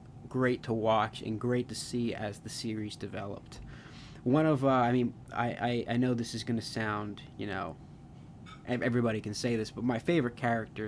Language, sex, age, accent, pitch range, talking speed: English, male, 20-39, American, 110-125 Hz, 195 wpm